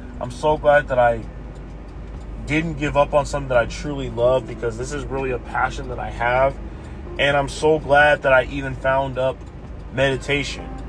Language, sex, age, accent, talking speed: English, male, 20-39, American, 180 wpm